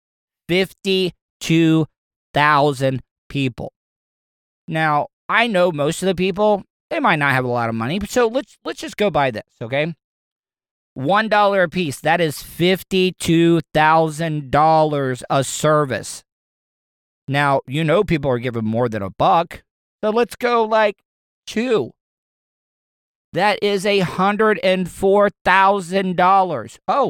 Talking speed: 115 wpm